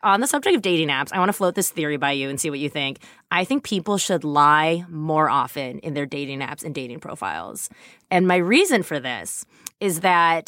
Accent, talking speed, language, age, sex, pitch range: American, 230 wpm, English, 20-39, female, 155-215 Hz